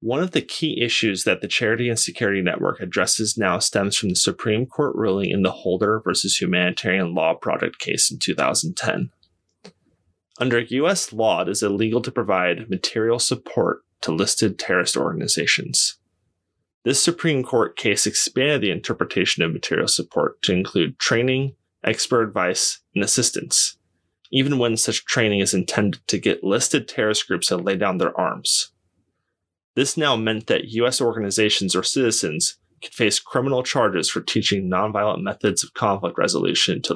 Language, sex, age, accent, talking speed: English, male, 20-39, American, 155 wpm